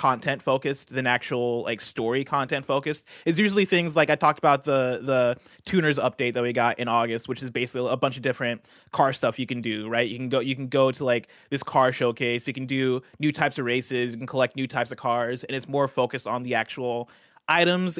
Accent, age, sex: American, 20-39, male